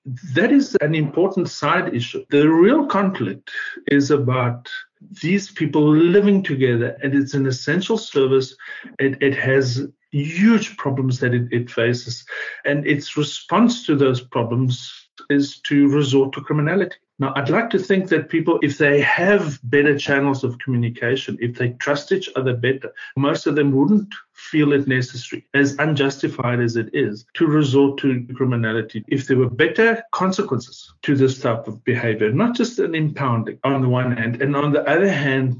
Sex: male